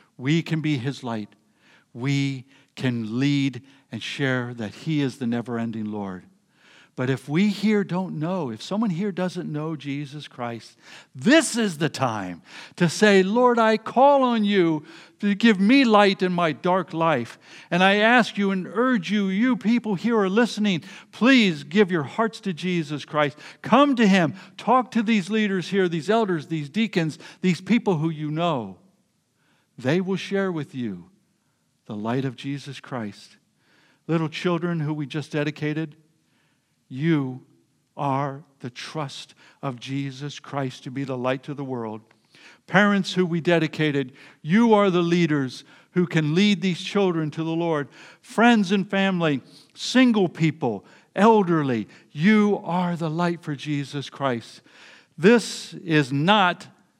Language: English